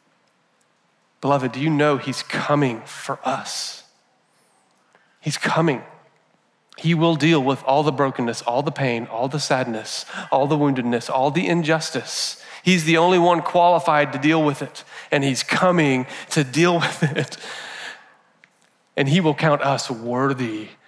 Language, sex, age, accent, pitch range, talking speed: English, male, 30-49, American, 135-160 Hz, 145 wpm